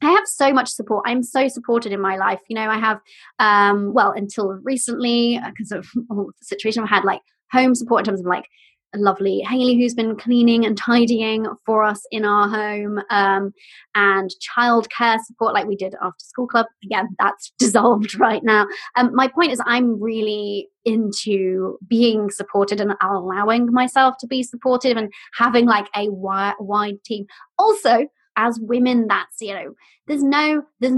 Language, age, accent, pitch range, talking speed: English, 20-39, British, 205-265 Hz, 180 wpm